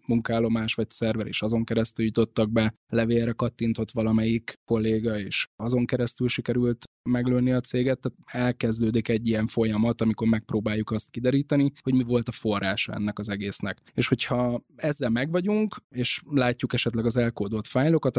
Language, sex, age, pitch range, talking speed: Hungarian, male, 10-29, 115-130 Hz, 155 wpm